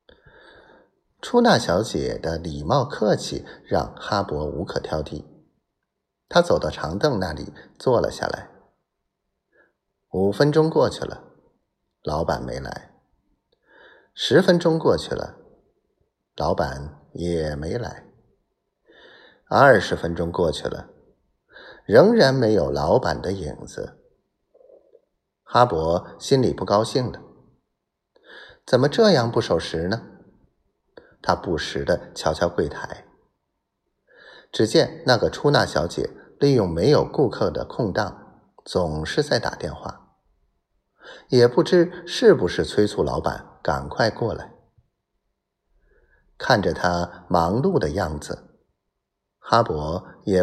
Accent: native